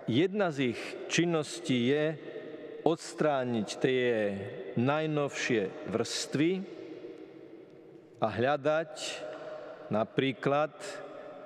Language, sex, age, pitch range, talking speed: Slovak, male, 50-69, 130-165 Hz, 65 wpm